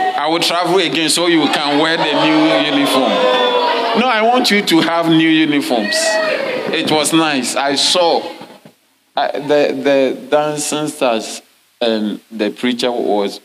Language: English